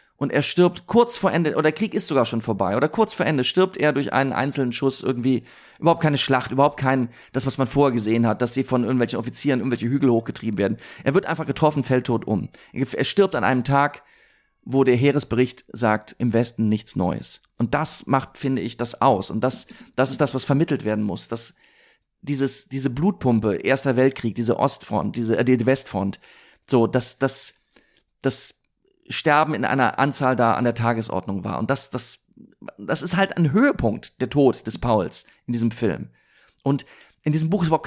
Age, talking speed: 30-49, 200 wpm